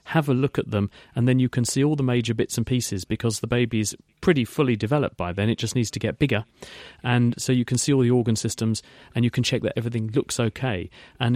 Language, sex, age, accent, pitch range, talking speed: English, male, 40-59, British, 115-135 Hz, 260 wpm